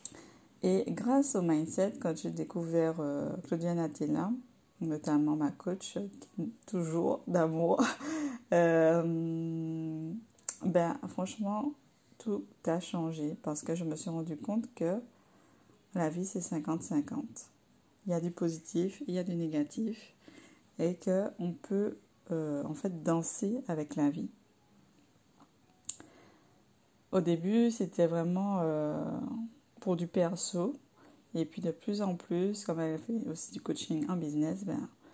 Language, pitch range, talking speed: French, 160-195 Hz, 130 wpm